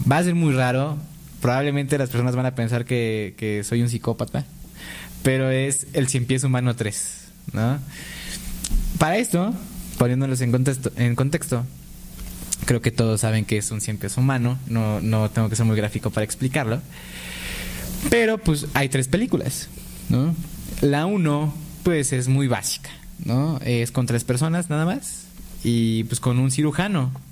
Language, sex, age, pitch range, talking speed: Spanish, male, 20-39, 115-150 Hz, 165 wpm